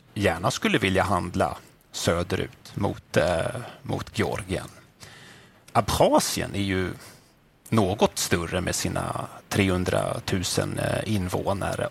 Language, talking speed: Swedish, 90 wpm